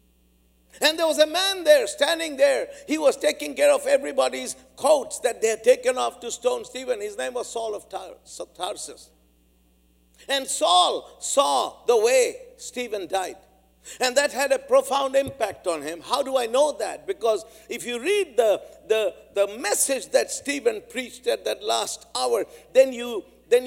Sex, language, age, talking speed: male, English, 60-79, 170 wpm